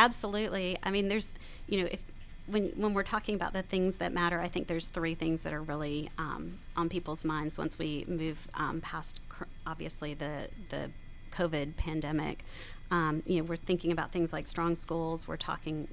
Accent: American